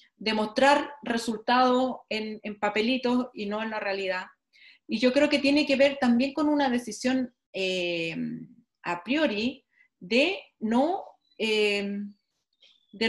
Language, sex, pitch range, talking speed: Spanish, female, 185-250 Hz, 130 wpm